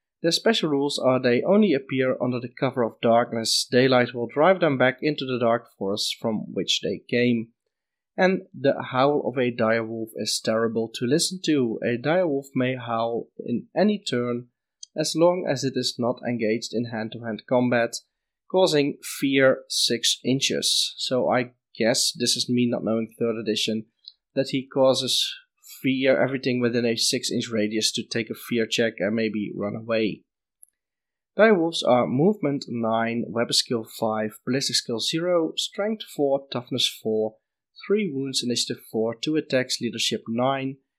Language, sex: English, male